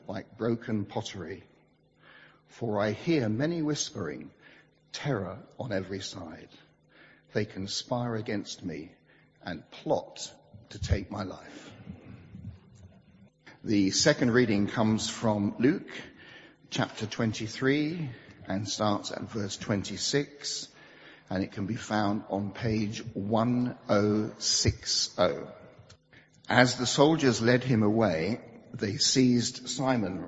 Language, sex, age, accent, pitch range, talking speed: English, male, 60-79, British, 100-125 Hz, 105 wpm